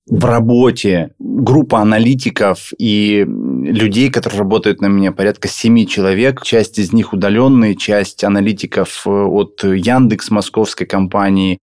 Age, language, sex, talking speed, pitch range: 20-39, Russian, male, 120 wpm, 95-120 Hz